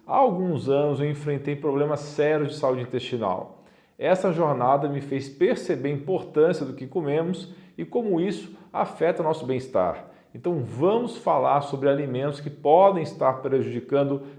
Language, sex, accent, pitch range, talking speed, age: Portuguese, male, Brazilian, 140-170 Hz, 145 wpm, 40-59